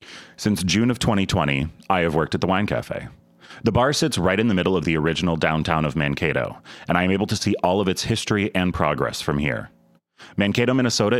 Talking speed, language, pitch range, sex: 215 wpm, English, 80-105 Hz, male